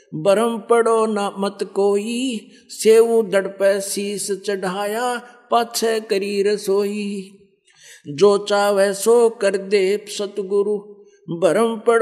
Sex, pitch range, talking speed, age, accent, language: male, 200-230 Hz, 90 wpm, 50-69, native, Hindi